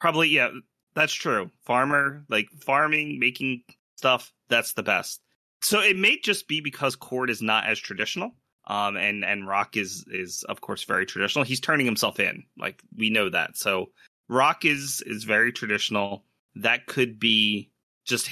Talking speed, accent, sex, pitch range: 165 wpm, American, male, 110-140 Hz